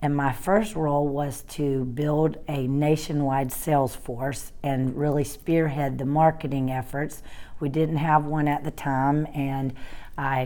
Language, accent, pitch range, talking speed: English, American, 135-155 Hz, 150 wpm